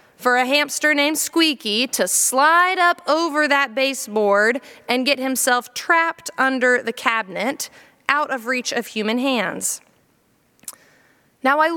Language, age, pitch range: English, 20-39, 250-310 Hz